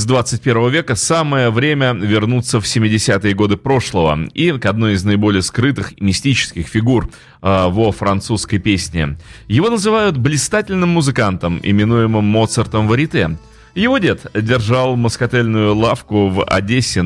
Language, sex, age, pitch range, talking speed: Russian, male, 30-49, 100-135 Hz, 125 wpm